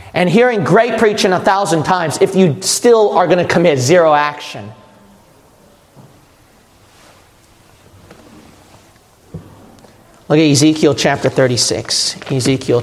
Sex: male